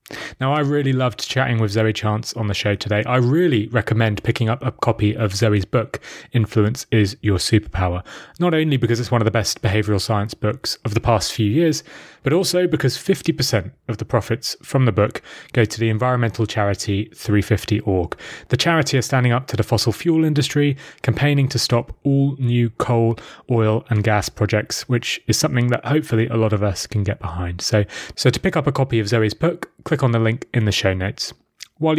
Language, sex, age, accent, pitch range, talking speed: English, male, 30-49, British, 110-140 Hz, 205 wpm